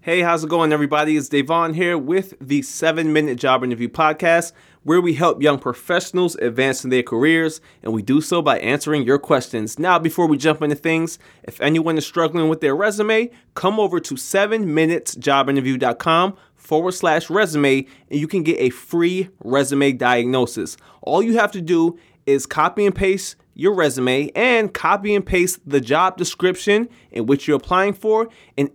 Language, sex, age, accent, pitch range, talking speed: English, male, 20-39, American, 140-185 Hz, 175 wpm